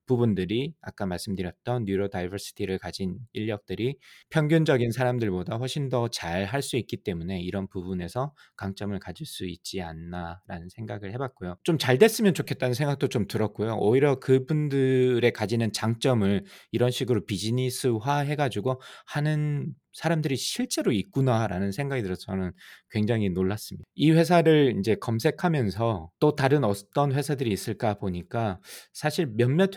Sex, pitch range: male, 95-130 Hz